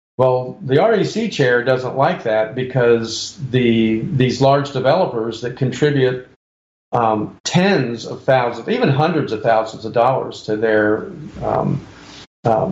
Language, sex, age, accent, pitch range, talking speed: English, male, 50-69, American, 120-150 Hz, 130 wpm